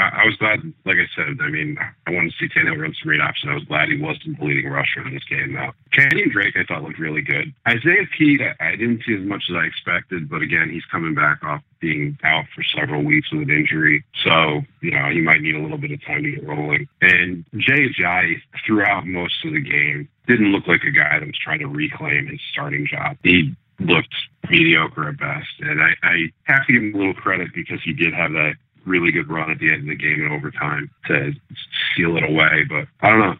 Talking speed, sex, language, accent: 245 wpm, male, English, American